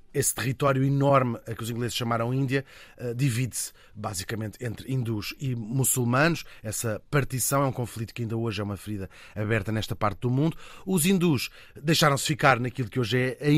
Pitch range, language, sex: 115-145 Hz, Portuguese, male